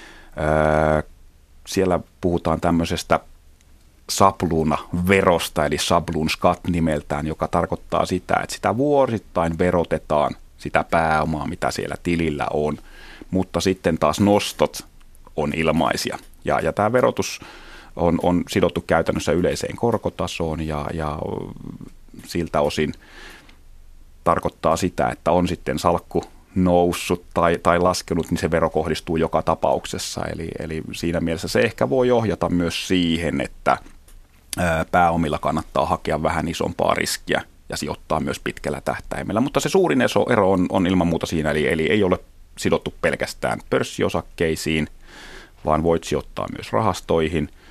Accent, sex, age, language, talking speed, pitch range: native, male, 30-49, Finnish, 125 wpm, 75-90 Hz